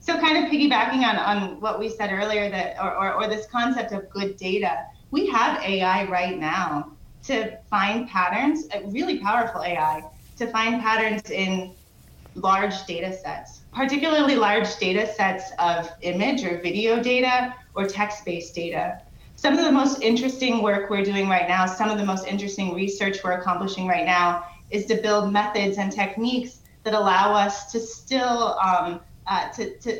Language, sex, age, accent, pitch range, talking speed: English, female, 30-49, American, 185-225 Hz, 170 wpm